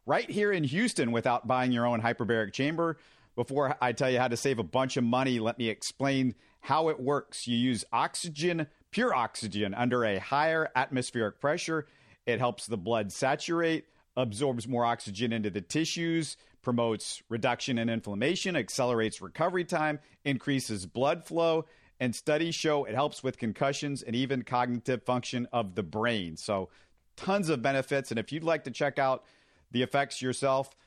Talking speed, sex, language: 165 wpm, male, English